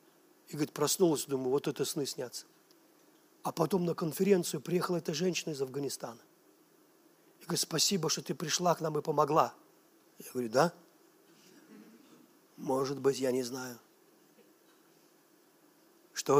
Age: 40-59